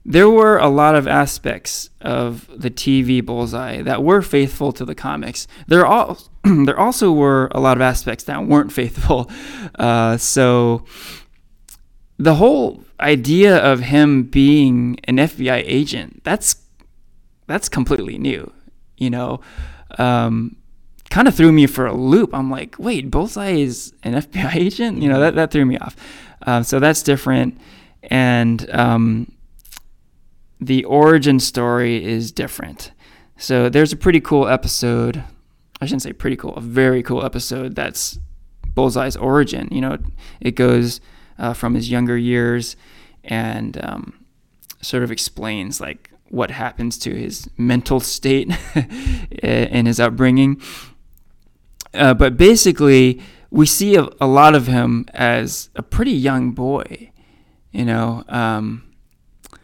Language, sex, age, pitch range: English, male, 20-39, 115-140 Hz